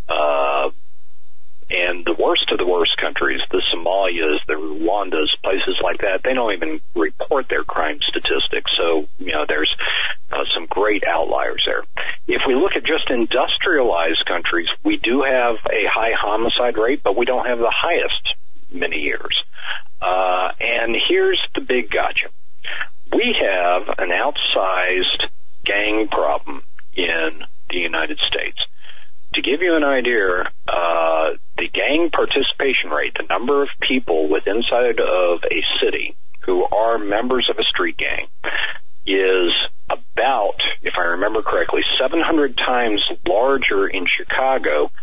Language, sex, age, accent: English, male, 50-69, American